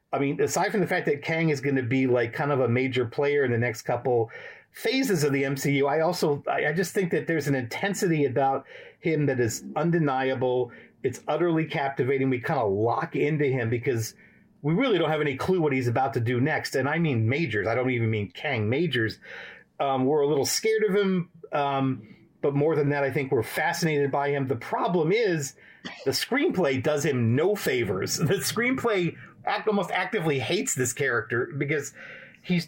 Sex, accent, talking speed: male, American, 200 wpm